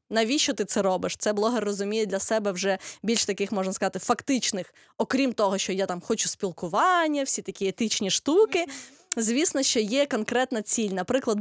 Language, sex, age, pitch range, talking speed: Ukrainian, female, 20-39, 195-240 Hz, 170 wpm